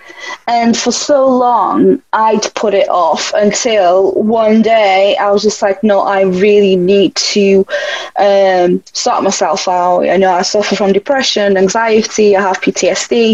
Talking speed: 155 wpm